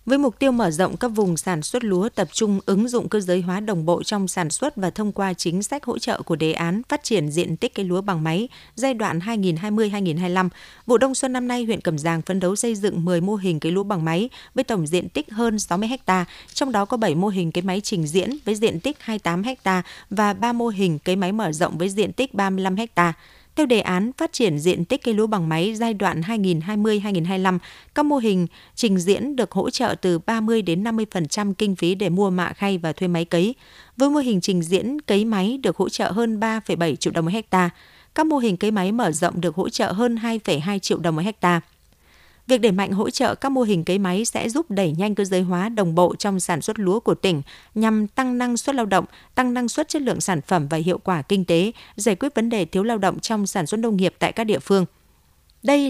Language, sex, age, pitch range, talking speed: Vietnamese, female, 20-39, 180-230 Hz, 240 wpm